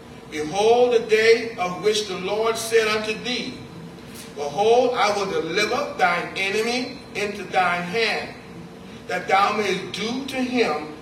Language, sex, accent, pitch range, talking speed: English, male, American, 175-235 Hz, 135 wpm